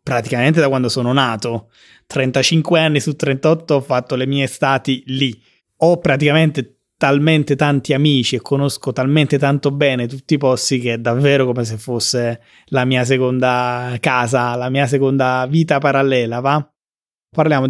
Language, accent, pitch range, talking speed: Italian, native, 130-155 Hz, 155 wpm